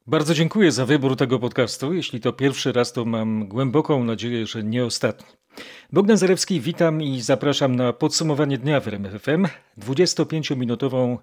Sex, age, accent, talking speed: male, 40-59, native, 155 wpm